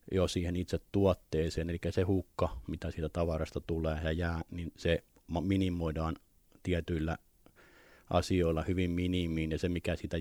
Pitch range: 80-90 Hz